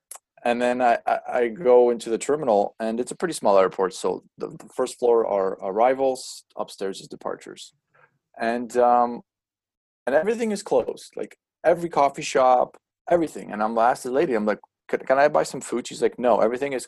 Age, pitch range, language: 20-39, 110-155 Hz, English